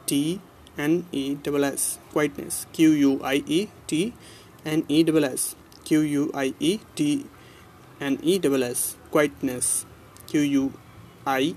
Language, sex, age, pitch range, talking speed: English, male, 30-49, 135-165 Hz, 135 wpm